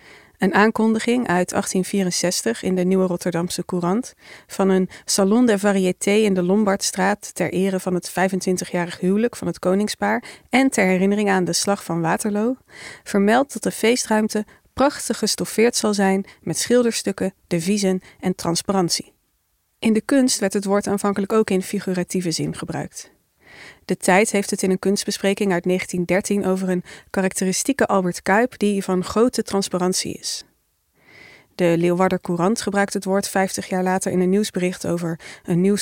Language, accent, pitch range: Dutch, Dutch, 180-210 Hz